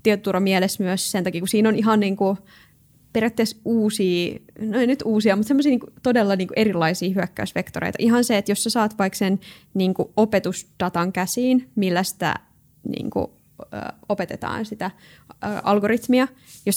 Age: 20-39